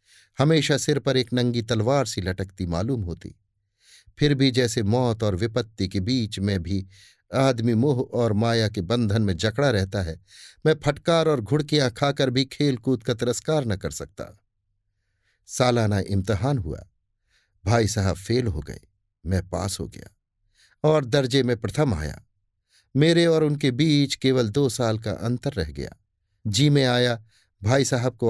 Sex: male